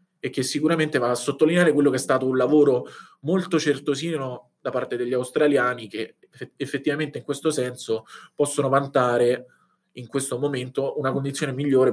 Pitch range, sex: 120-155 Hz, male